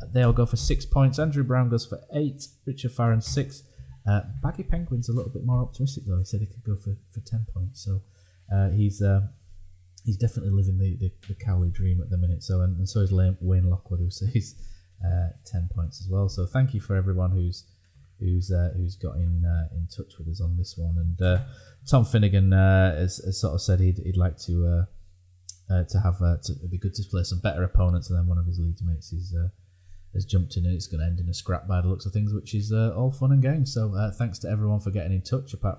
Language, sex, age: English, male, 20-39